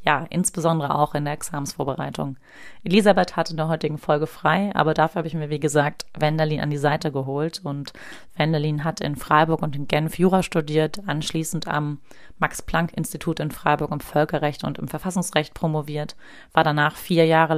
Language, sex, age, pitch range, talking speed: German, female, 30-49, 150-170 Hz, 170 wpm